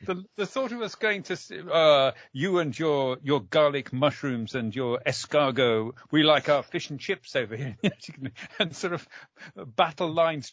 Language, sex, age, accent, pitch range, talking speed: English, male, 50-69, British, 115-150 Hz, 170 wpm